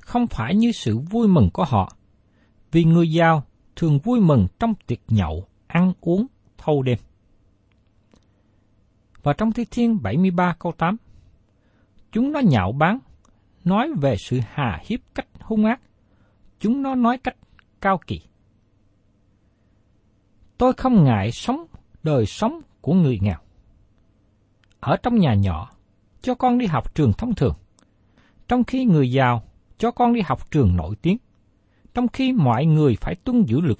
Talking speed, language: 150 wpm, Vietnamese